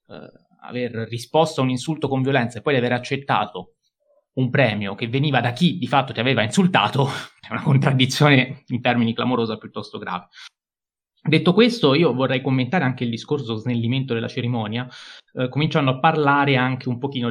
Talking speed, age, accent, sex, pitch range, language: 165 wpm, 20-39, native, male, 115-140 Hz, Italian